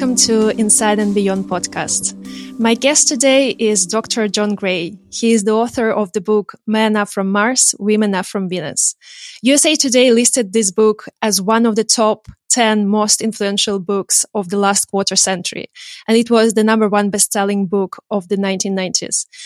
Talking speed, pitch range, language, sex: 180 wpm, 200-235 Hz, English, female